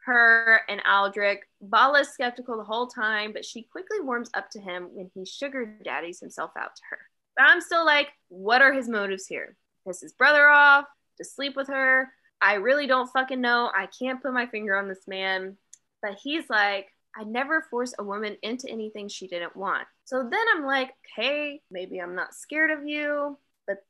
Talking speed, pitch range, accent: 195 wpm, 215-295 Hz, American